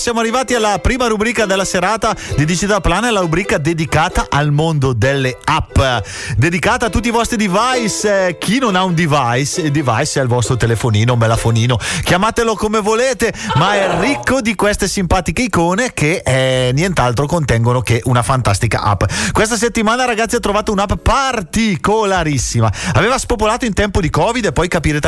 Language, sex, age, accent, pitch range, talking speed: Italian, male, 30-49, native, 130-215 Hz, 165 wpm